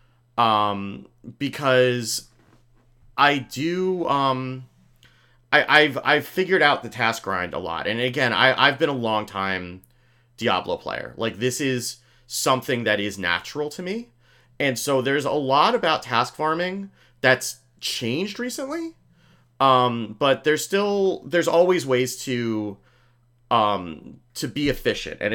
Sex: male